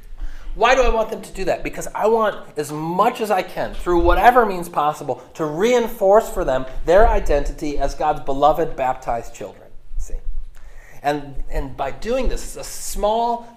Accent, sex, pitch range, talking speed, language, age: American, male, 125-165 Hz, 175 wpm, English, 30-49